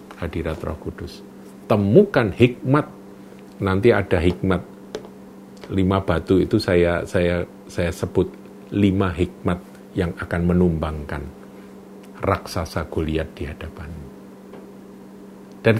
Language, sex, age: Indonesian, male, 50-69